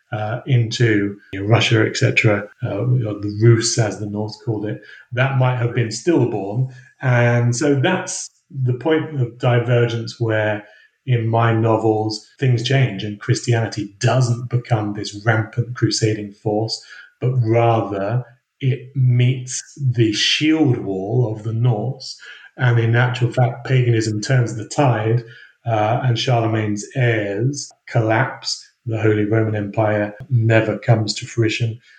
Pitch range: 110-125 Hz